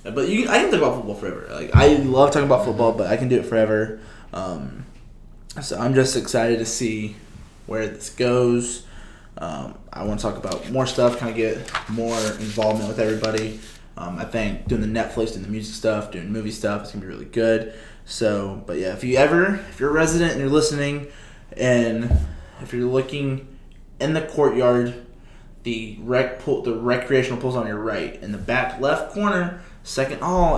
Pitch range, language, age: 110-145 Hz, English, 20-39